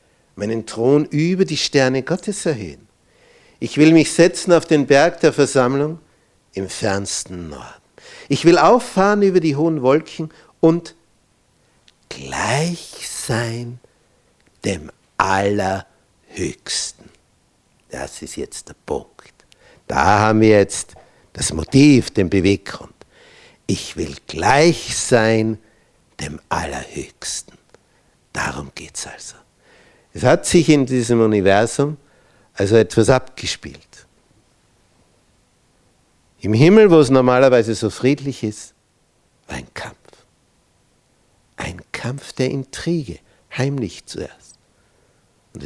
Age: 60-79